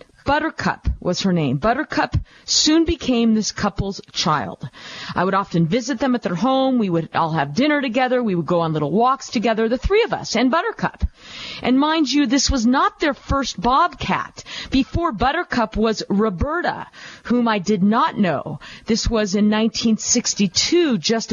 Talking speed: 170 wpm